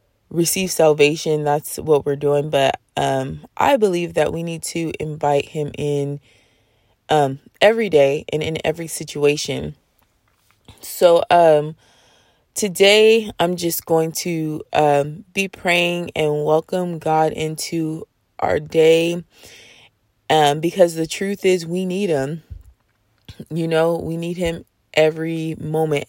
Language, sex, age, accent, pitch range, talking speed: English, female, 20-39, American, 140-170 Hz, 125 wpm